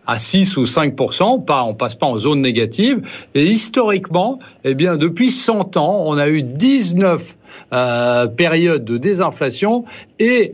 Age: 60-79